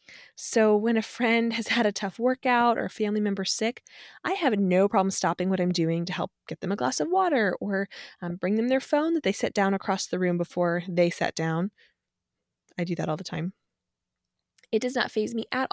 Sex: female